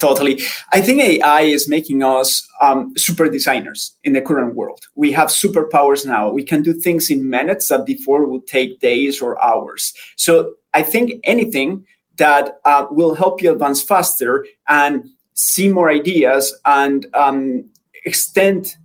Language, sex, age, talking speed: English, male, 30-49, 155 wpm